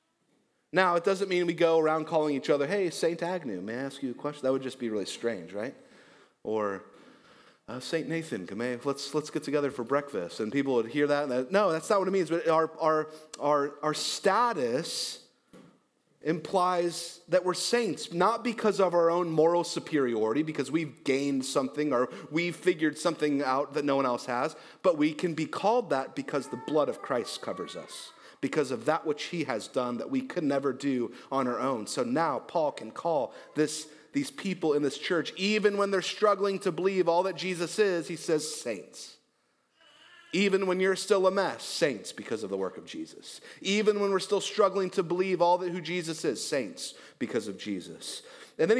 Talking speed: 200 wpm